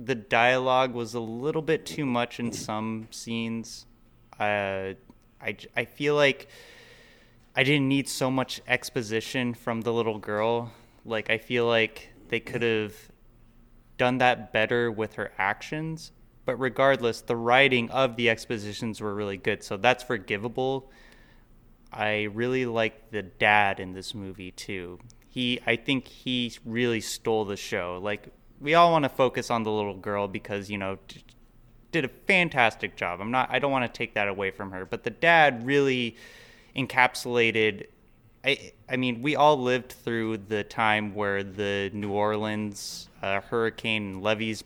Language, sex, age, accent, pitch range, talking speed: English, male, 20-39, American, 105-125 Hz, 160 wpm